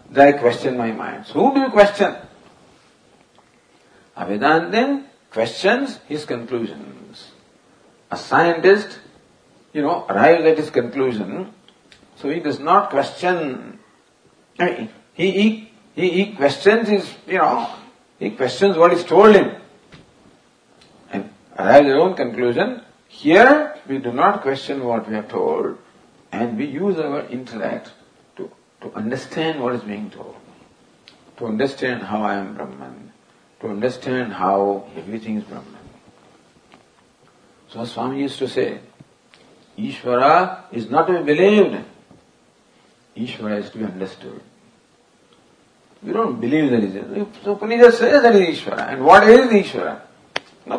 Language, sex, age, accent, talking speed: English, male, 50-69, Indian, 135 wpm